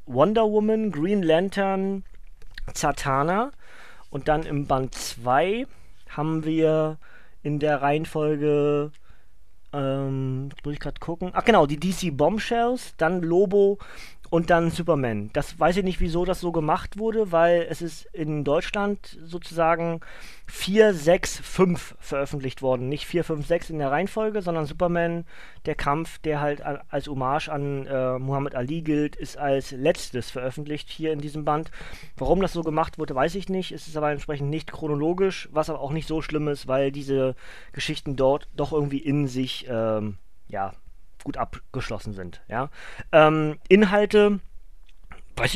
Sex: male